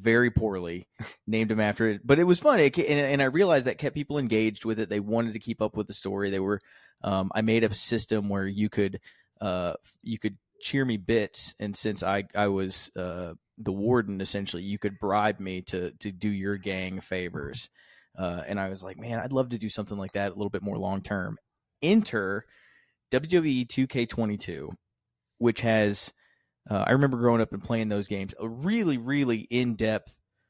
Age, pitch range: 20-39, 100-115 Hz